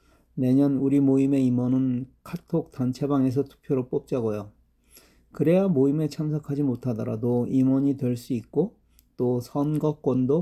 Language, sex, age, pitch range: Korean, male, 40-59, 120-150 Hz